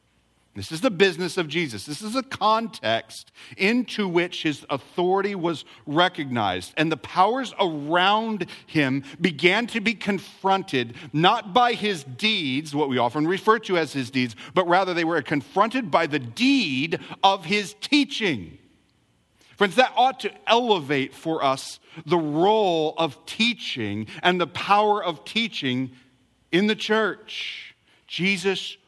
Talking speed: 140 wpm